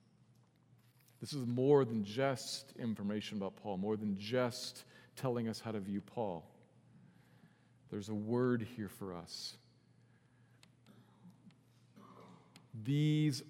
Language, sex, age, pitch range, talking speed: English, male, 40-59, 115-130 Hz, 105 wpm